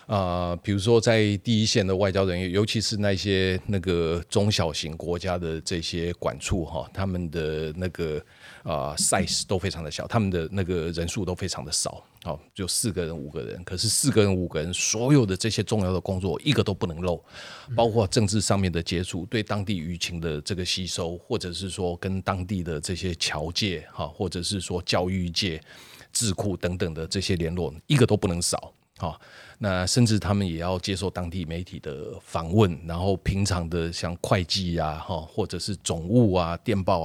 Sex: male